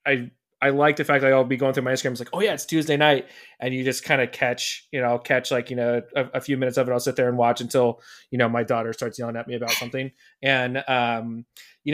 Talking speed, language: 280 wpm, English